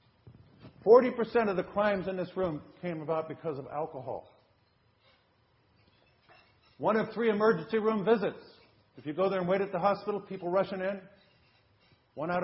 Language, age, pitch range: English, 50-69, 115-175 Hz